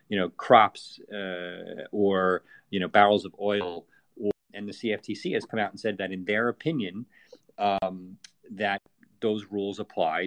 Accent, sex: American, male